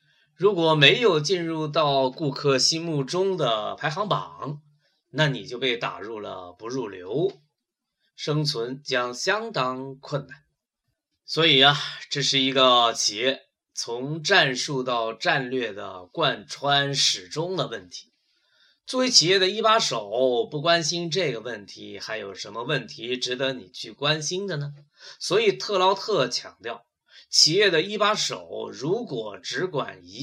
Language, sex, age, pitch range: Chinese, male, 20-39, 135-185 Hz